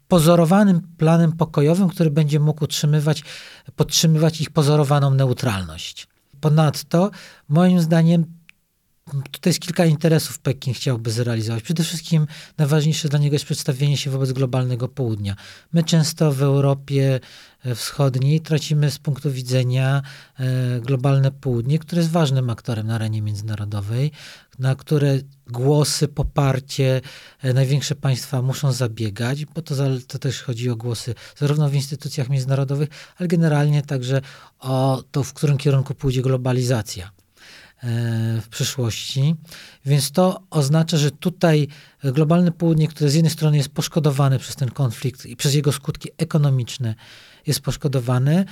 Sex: male